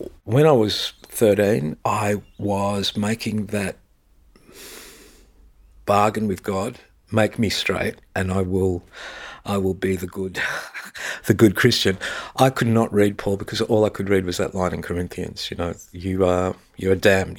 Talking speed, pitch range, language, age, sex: 160 wpm, 95-115 Hz, English, 50-69, male